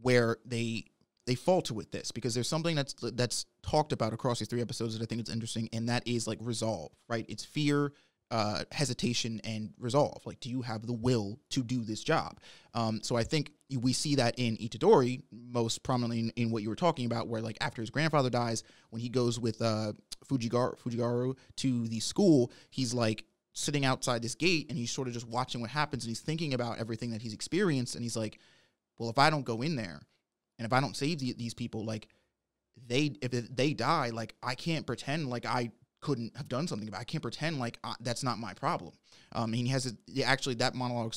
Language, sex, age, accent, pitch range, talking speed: English, male, 20-39, American, 115-140 Hz, 220 wpm